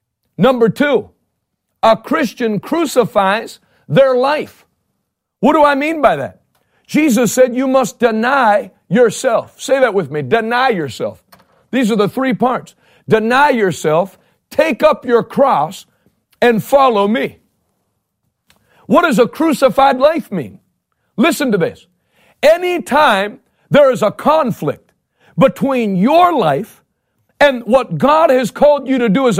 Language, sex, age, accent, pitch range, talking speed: English, male, 60-79, American, 225-285 Hz, 135 wpm